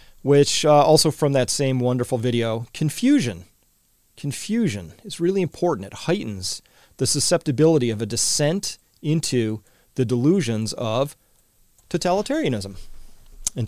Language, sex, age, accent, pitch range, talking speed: English, male, 40-59, American, 110-145 Hz, 115 wpm